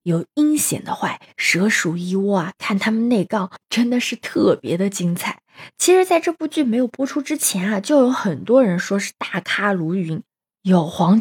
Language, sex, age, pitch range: Chinese, female, 20-39, 190-270 Hz